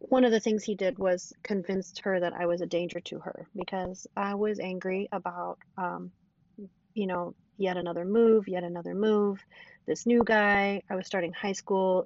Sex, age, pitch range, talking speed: female, 30-49, 180-205 Hz, 190 wpm